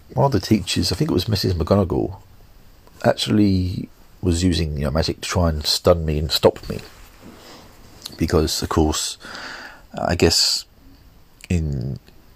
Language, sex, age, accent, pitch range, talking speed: English, male, 40-59, British, 75-100 Hz, 145 wpm